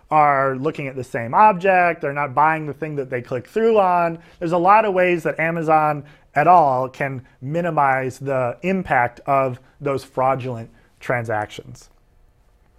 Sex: male